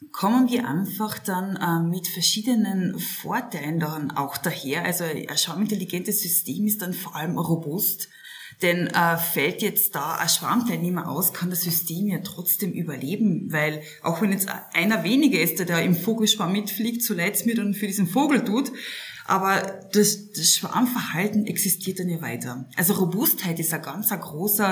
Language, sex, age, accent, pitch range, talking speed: German, female, 20-39, German, 170-215 Hz, 165 wpm